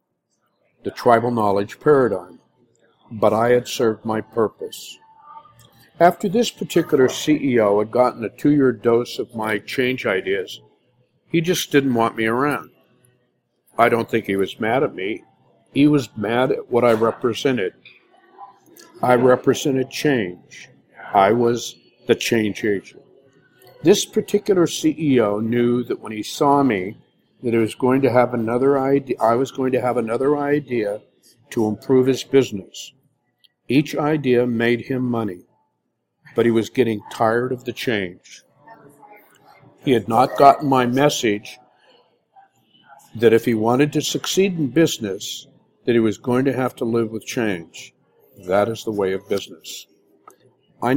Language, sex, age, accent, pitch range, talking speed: English, male, 60-79, American, 115-145 Hz, 145 wpm